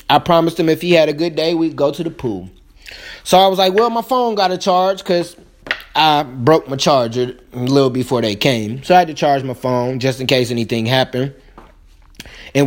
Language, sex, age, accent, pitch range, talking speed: English, male, 20-39, American, 130-185 Hz, 225 wpm